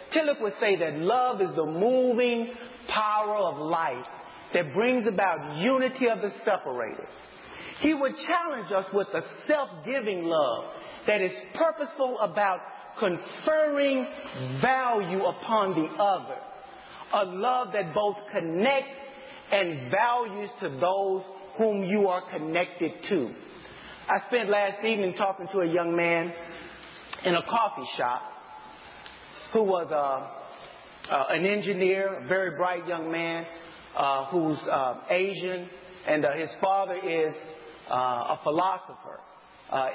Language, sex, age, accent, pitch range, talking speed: English, male, 40-59, American, 170-240 Hz, 130 wpm